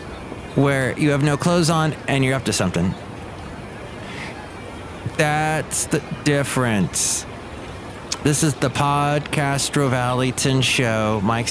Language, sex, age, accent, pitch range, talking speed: English, male, 30-49, American, 105-140 Hz, 110 wpm